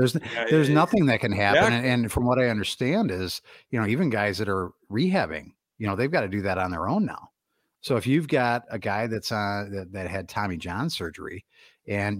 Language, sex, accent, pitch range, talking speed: English, male, American, 100-135 Hz, 230 wpm